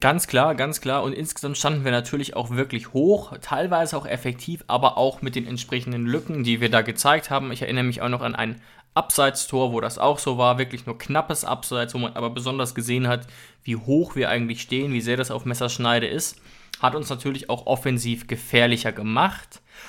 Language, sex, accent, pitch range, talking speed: German, male, German, 120-145 Hz, 200 wpm